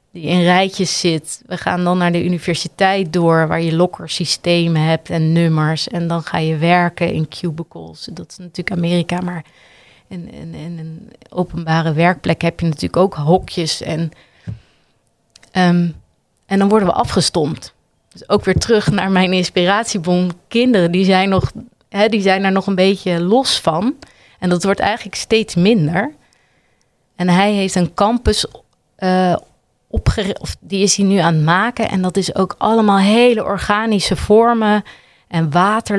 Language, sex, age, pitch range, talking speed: Dutch, female, 30-49, 170-200 Hz, 160 wpm